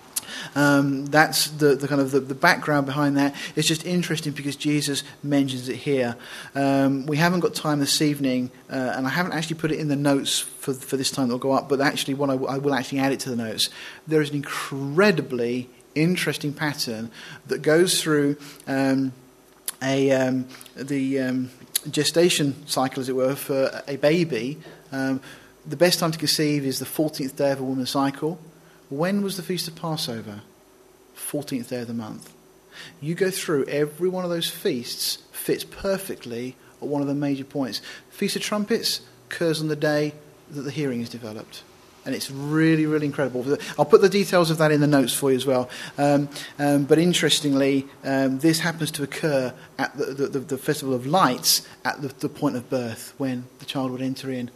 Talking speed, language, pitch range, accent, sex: 195 wpm, English, 130-155 Hz, British, male